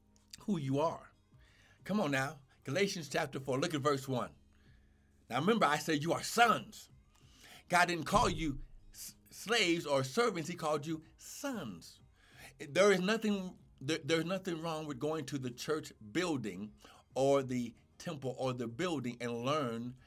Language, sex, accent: English, male, American